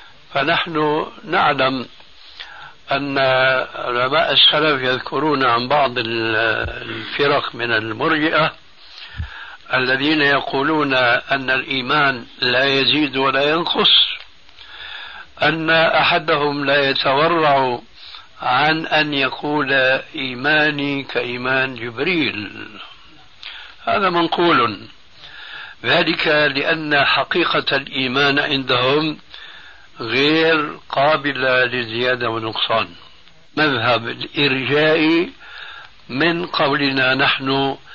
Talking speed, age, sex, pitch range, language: 70 wpm, 60-79, male, 130-150 Hz, Arabic